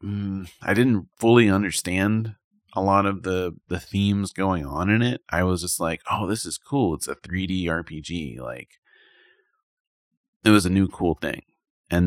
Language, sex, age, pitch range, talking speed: English, male, 30-49, 80-105 Hz, 170 wpm